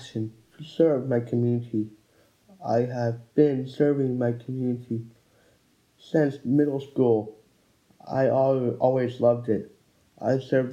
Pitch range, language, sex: 115-135 Hz, English, male